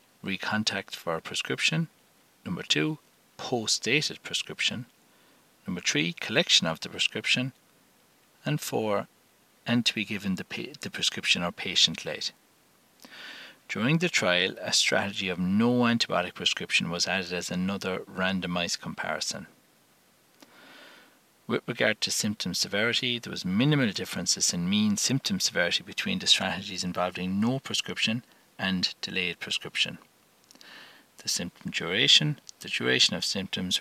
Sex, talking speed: male, 130 wpm